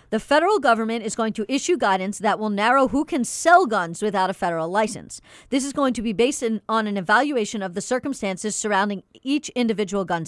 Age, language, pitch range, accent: 40-59, English, 205-255 Hz, American